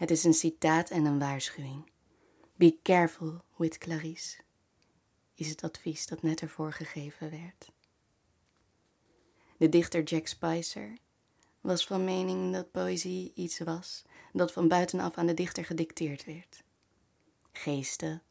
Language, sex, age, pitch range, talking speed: Dutch, female, 20-39, 155-175 Hz, 130 wpm